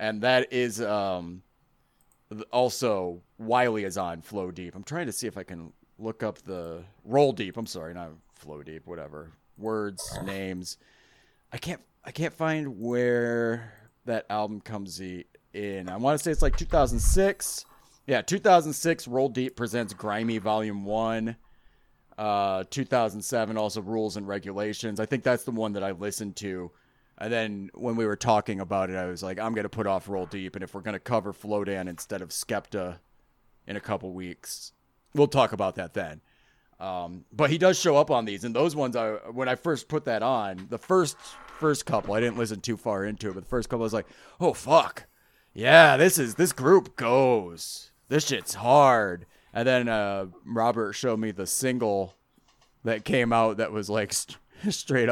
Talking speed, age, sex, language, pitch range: 185 wpm, 30-49, male, English, 100-125 Hz